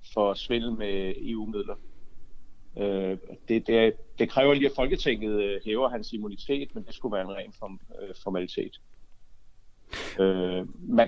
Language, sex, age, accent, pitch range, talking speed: Danish, male, 60-79, native, 100-145 Hz, 150 wpm